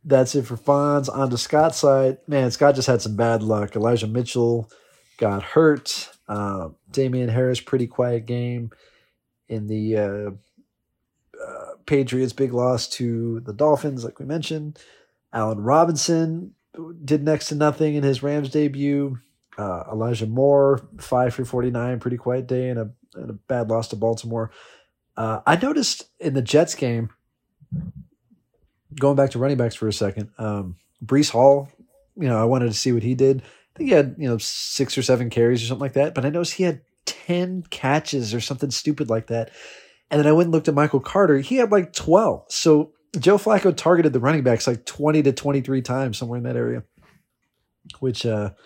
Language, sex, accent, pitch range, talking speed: English, male, American, 115-145 Hz, 180 wpm